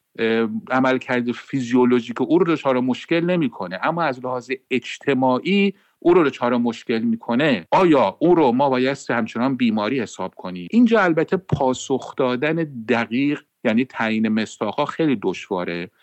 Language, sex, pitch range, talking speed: English, male, 115-160 Hz, 150 wpm